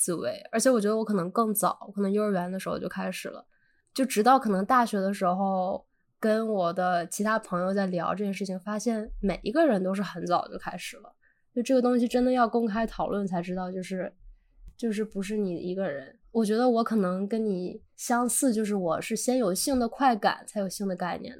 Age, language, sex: 10-29, Chinese, female